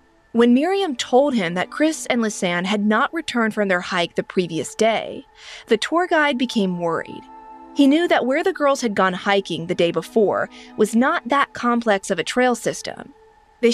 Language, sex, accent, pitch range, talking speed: English, female, American, 190-260 Hz, 190 wpm